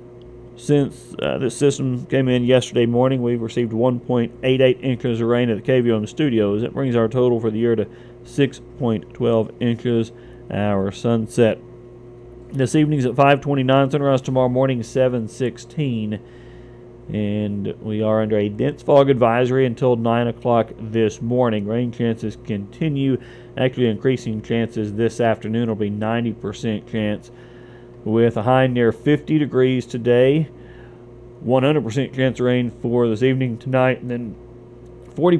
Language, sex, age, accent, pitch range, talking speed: English, male, 40-59, American, 115-130 Hz, 140 wpm